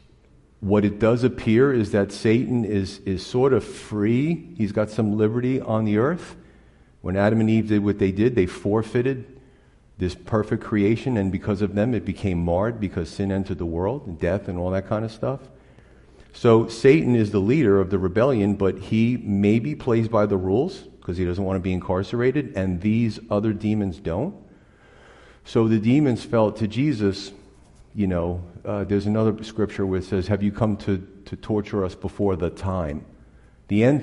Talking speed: 185 wpm